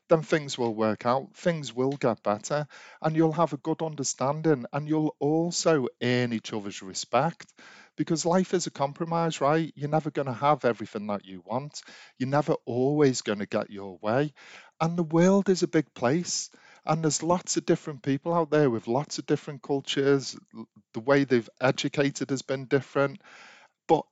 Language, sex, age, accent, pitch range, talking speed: English, male, 40-59, British, 110-155 Hz, 180 wpm